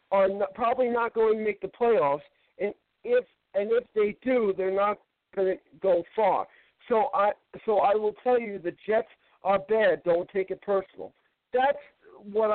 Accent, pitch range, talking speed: American, 190-250 Hz, 180 wpm